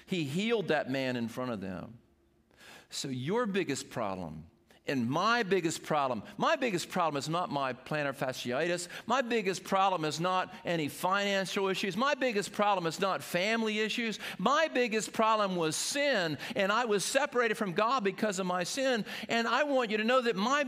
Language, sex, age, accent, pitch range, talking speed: English, male, 50-69, American, 180-240 Hz, 180 wpm